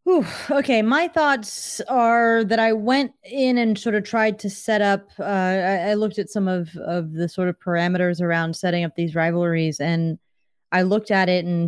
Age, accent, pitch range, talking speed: 30-49, American, 170-210 Hz, 200 wpm